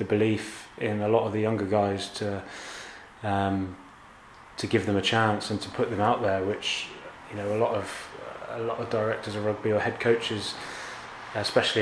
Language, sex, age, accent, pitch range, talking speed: English, male, 20-39, British, 105-115 Hz, 195 wpm